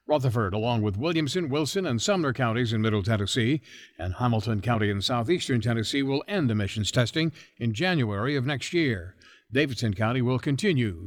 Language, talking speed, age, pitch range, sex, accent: English, 165 wpm, 60-79, 120-170 Hz, male, American